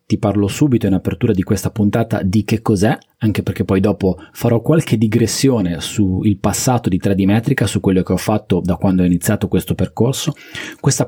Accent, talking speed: native, 190 wpm